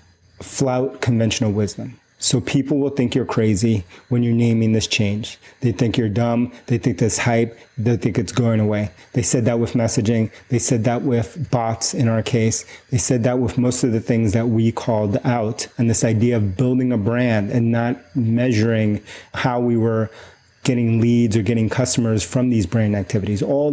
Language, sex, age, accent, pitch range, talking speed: English, male, 30-49, American, 110-125 Hz, 190 wpm